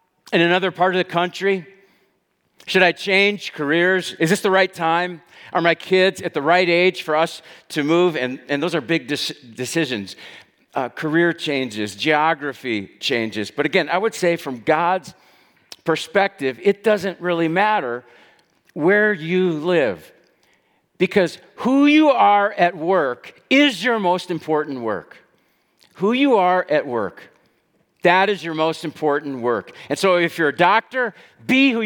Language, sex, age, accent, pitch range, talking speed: English, male, 50-69, American, 155-200 Hz, 155 wpm